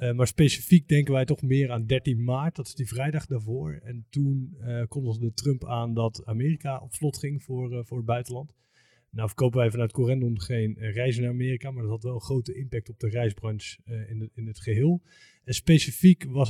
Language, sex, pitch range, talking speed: Dutch, male, 115-135 Hz, 215 wpm